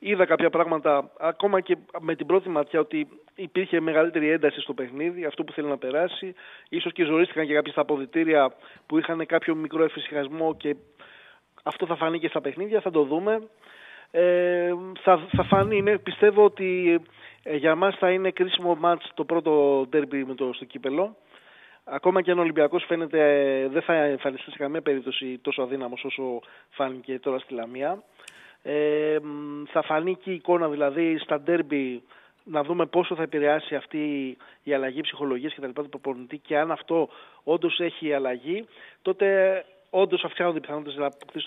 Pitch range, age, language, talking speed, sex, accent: 145-185 Hz, 20-39, Greek, 165 wpm, male, native